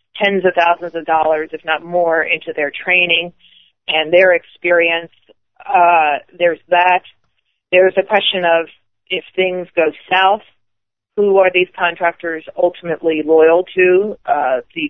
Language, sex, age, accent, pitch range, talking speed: English, female, 40-59, American, 165-190 Hz, 135 wpm